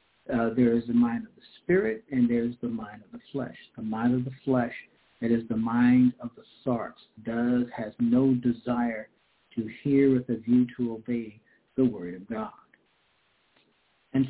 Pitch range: 120-140 Hz